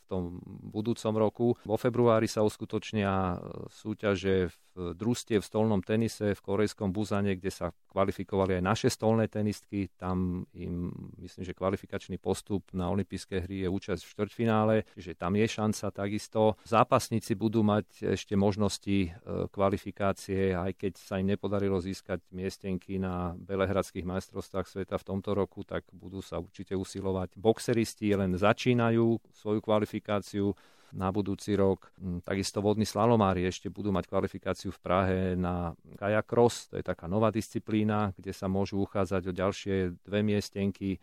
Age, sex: 40-59, male